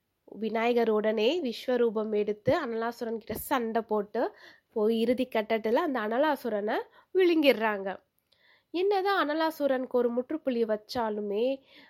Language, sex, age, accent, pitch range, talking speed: Tamil, female, 20-39, native, 220-275 Hz, 90 wpm